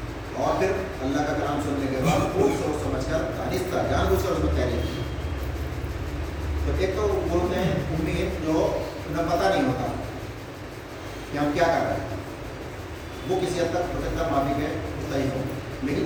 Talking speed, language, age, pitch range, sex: 135 wpm, Urdu, 40-59, 105-150 Hz, male